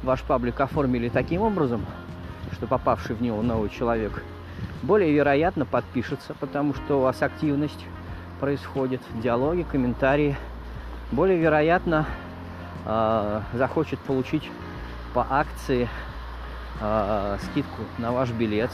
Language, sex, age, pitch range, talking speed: Russian, male, 20-39, 90-130 Hz, 110 wpm